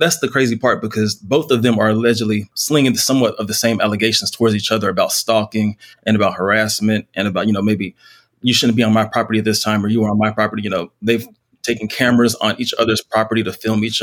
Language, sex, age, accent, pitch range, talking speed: English, male, 20-39, American, 105-120 Hz, 240 wpm